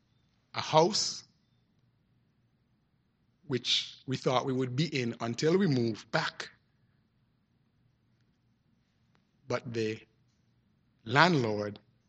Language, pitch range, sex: English, 110-140 Hz, male